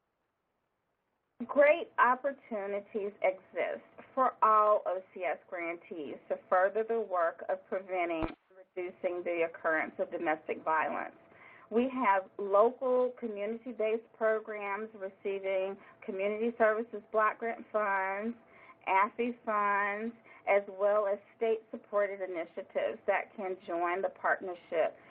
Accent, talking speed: American, 105 wpm